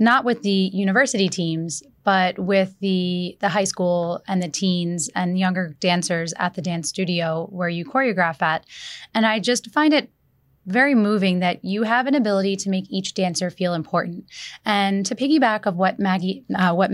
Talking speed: 170 wpm